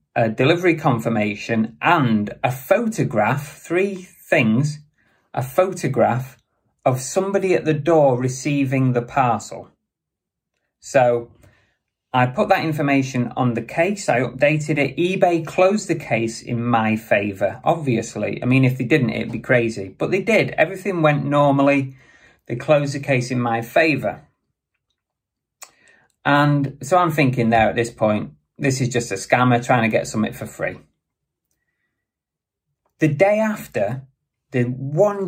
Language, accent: English, British